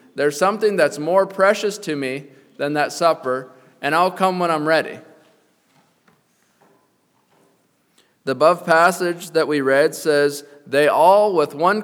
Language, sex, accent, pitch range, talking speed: English, male, American, 150-195 Hz, 135 wpm